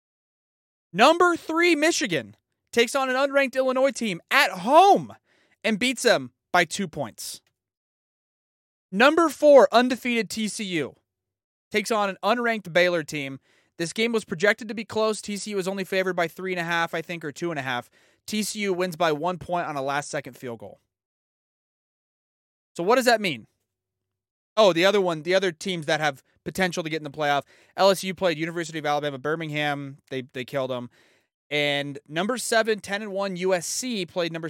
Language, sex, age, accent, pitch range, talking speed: English, male, 30-49, American, 140-220 Hz, 170 wpm